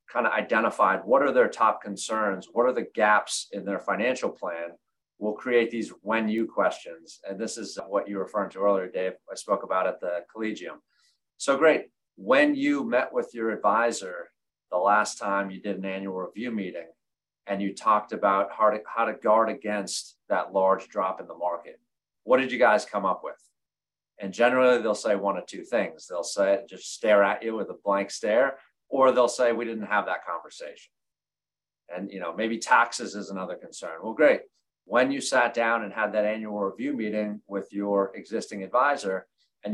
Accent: American